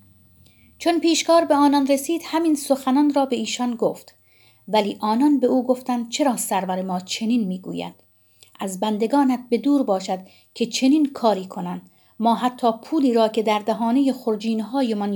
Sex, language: female, Persian